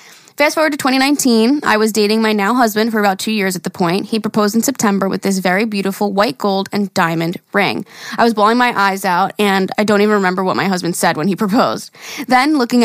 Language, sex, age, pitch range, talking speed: English, female, 20-39, 195-235 Hz, 235 wpm